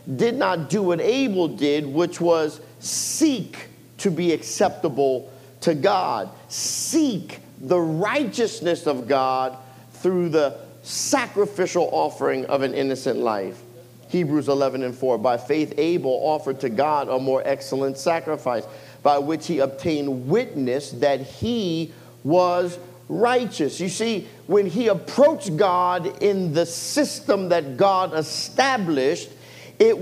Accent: American